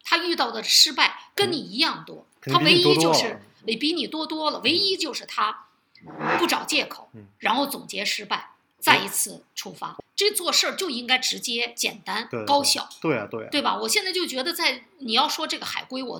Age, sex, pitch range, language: 50-69, female, 255-335 Hz, Chinese